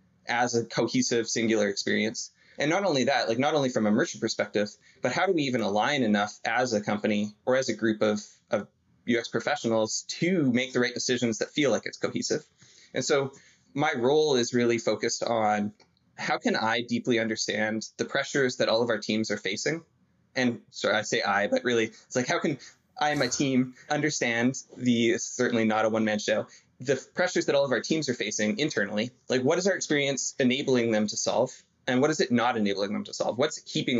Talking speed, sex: 210 wpm, male